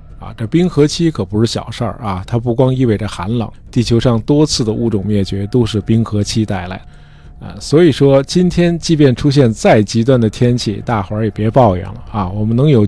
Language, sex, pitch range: Chinese, male, 100-130 Hz